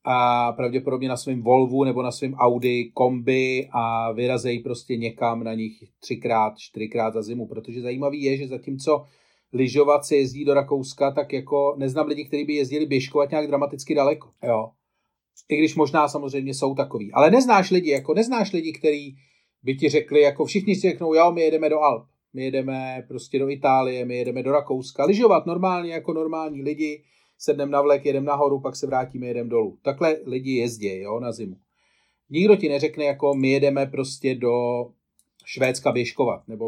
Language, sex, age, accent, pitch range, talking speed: Czech, male, 40-59, native, 125-150 Hz, 175 wpm